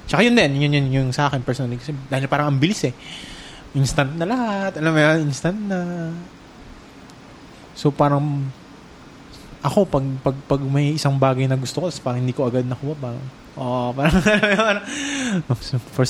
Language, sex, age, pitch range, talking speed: English, male, 20-39, 130-165 Hz, 165 wpm